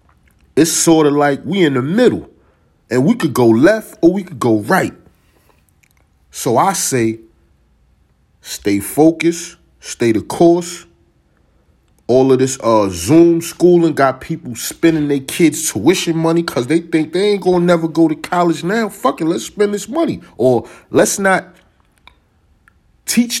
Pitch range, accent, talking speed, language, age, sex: 120-170 Hz, American, 155 wpm, English, 30-49, male